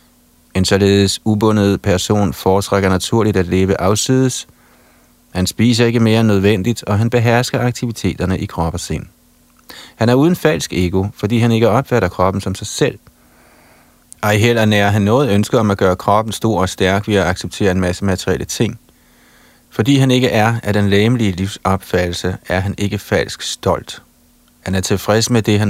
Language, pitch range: Danish, 90-115 Hz